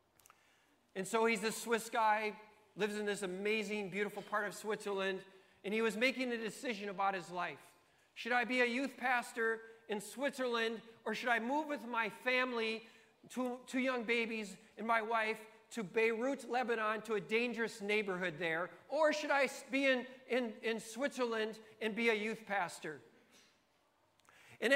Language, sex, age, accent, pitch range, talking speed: English, male, 40-59, American, 220-280 Hz, 160 wpm